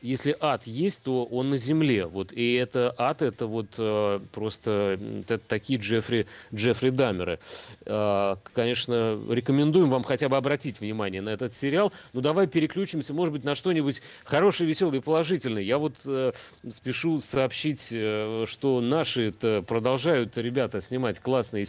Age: 30-49